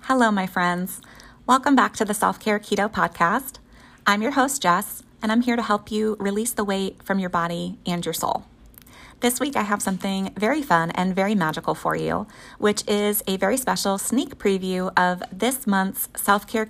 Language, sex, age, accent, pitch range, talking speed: English, female, 30-49, American, 190-225 Hz, 185 wpm